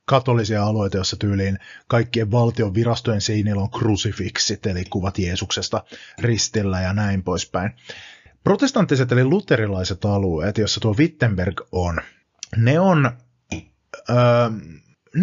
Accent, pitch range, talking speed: native, 100-130 Hz, 110 wpm